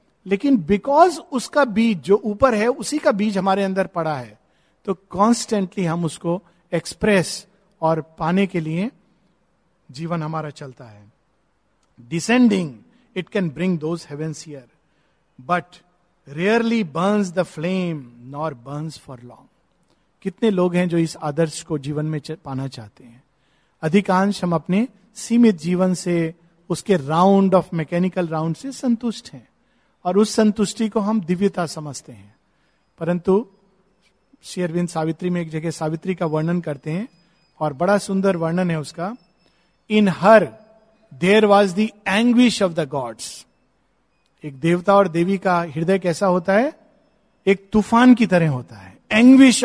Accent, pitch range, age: native, 160-215 Hz, 50-69